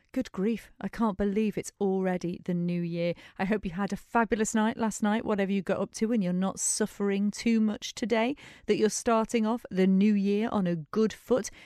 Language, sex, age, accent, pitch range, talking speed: English, female, 40-59, British, 175-230 Hz, 215 wpm